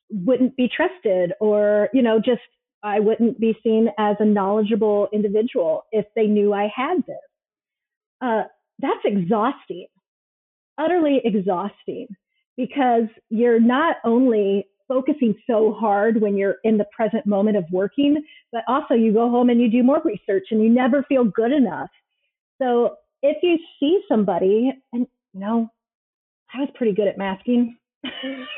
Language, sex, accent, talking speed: English, female, American, 150 wpm